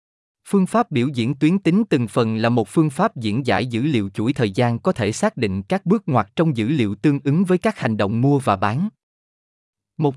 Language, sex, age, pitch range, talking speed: Vietnamese, male, 20-39, 110-155 Hz, 230 wpm